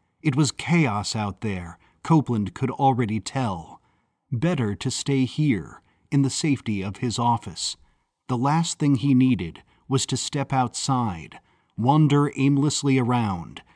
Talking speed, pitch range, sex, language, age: 135 wpm, 110-145 Hz, male, English, 40-59